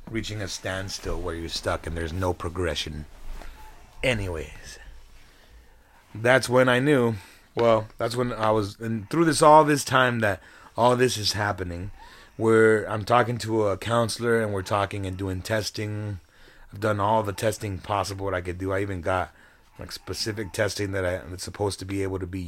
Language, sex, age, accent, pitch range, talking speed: English, male, 30-49, American, 95-115 Hz, 180 wpm